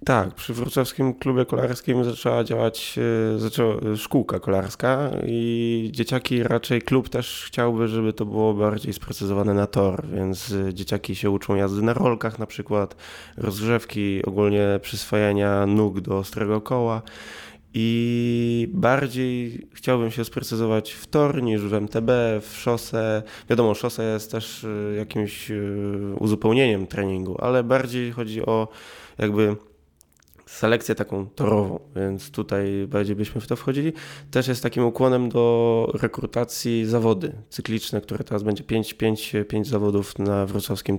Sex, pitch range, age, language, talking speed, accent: male, 100-120 Hz, 20-39, Polish, 130 wpm, native